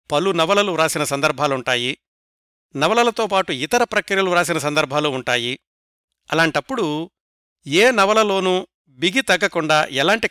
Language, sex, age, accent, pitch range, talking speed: Telugu, male, 60-79, native, 140-190 Hz, 100 wpm